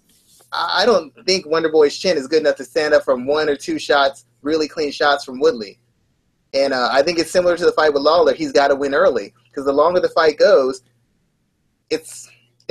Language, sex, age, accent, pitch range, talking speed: English, male, 30-49, American, 140-180 Hz, 210 wpm